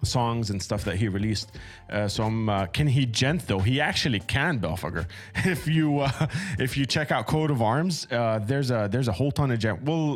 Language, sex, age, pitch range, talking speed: English, male, 30-49, 105-125 Hz, 220 wpm